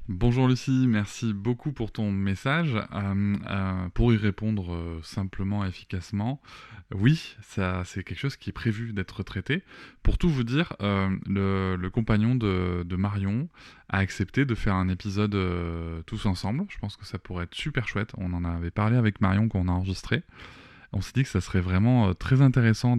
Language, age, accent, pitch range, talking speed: French, 20-39, French, 95-115 Hz, 190 wpm